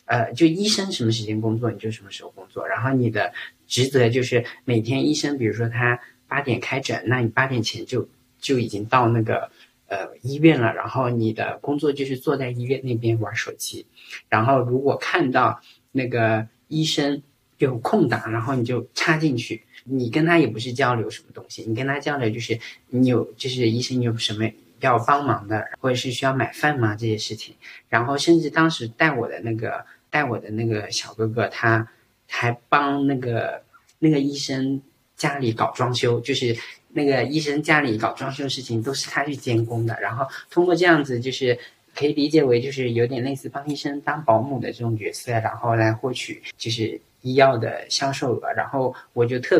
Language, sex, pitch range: Chinese, male, 115-140 Hz